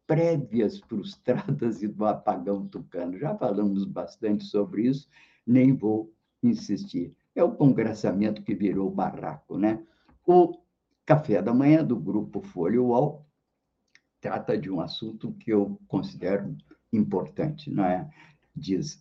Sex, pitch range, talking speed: male, 105-150 Hz, 120 wpm